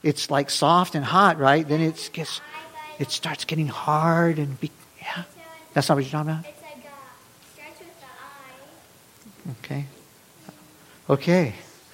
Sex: male